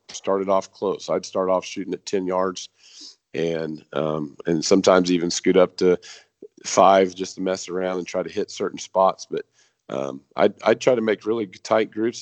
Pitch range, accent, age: 90-100 Hz, American, 40-59